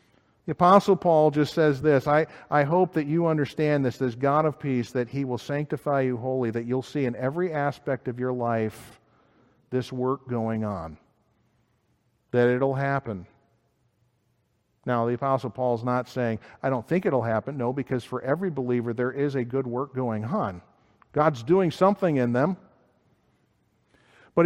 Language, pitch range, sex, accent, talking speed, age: English, 120-150 Hz, male, American, 165 wpm, 50-69